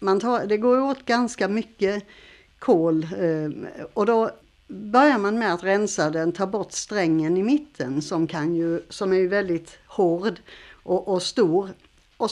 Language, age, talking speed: Swedish, 60-79, 155 wpm